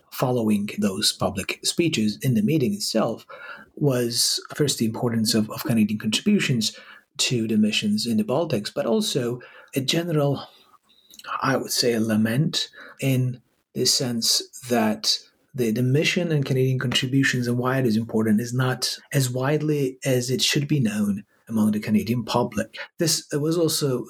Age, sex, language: 30-49, male, English